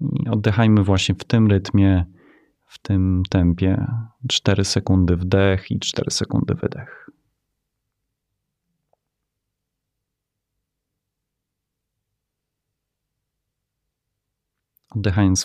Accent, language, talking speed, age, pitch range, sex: native, Polish, 65 wpm, 30-49, 90-115 Hz, male